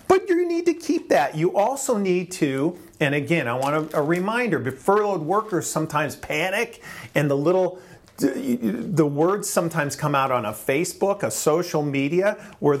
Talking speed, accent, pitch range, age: 175 wpm, American, 135-185 Hz, 40-59